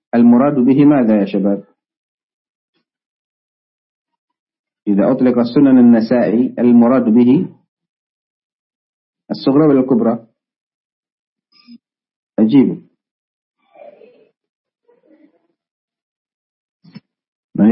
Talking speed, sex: 50 wpm, male